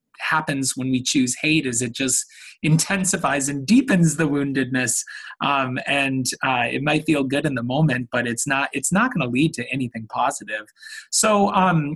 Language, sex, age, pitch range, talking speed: English, male, 20-39, 130-175 Hz, 180 wpm